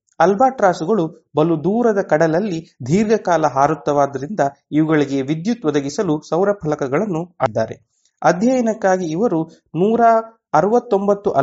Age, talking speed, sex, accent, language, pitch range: 30-49, 95 wpm, male, Indian, English, 145-185 Hz